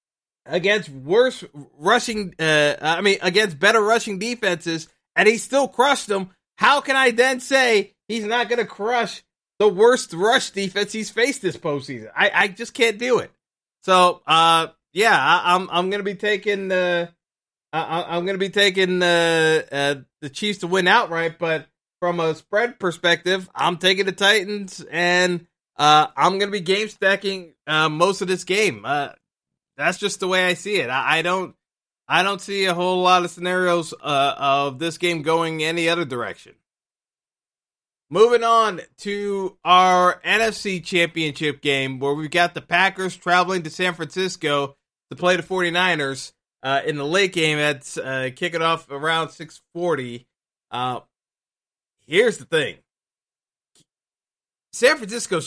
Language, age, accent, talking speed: English, 20-39, American, 160 wpm